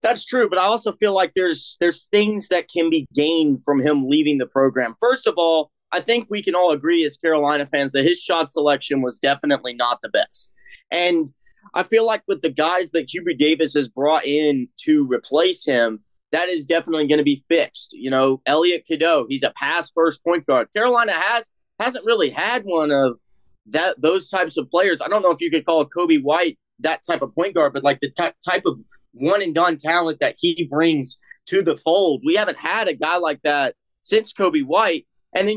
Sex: male